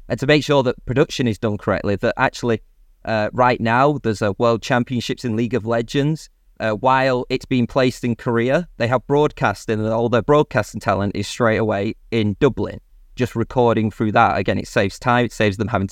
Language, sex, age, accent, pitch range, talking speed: English, male, 20-39, British, 105-130 Hz, 205 wpm